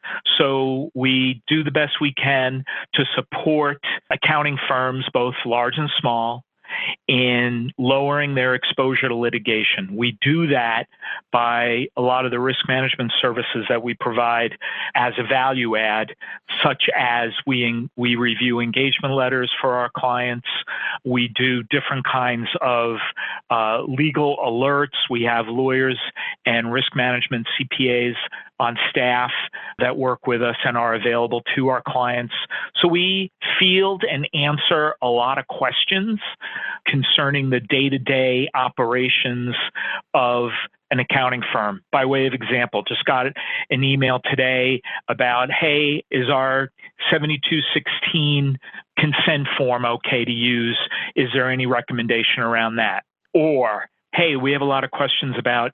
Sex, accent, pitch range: male, American, 120-135 Hz